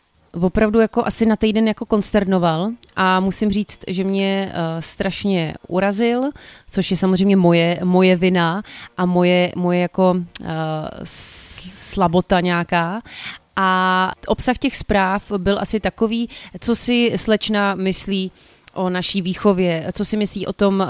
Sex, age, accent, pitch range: female, 30-49, native, 180-200 Hz